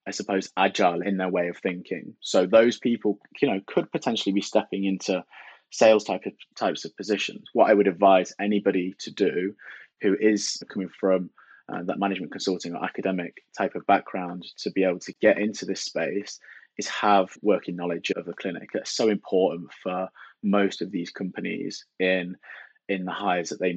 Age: 20-39